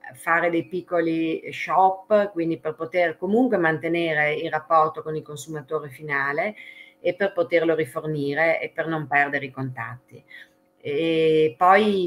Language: Italian